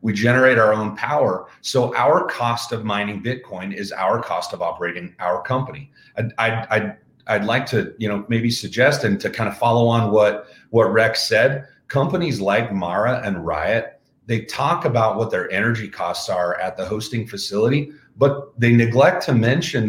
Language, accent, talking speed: English, American, 180 wpm